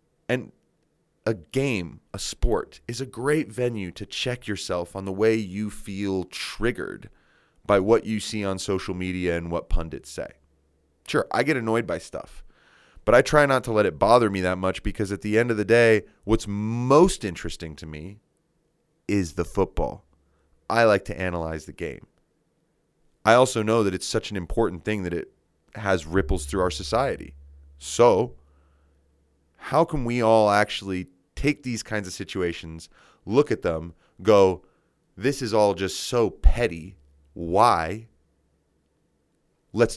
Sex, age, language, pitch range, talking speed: male, 30-49, English, 80-110 Hz, 160 wpm